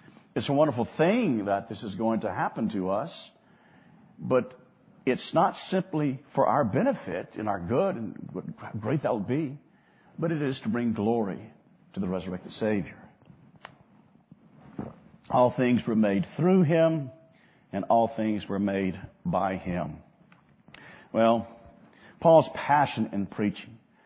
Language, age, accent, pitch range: English, 50-69, American, 100-155 Hz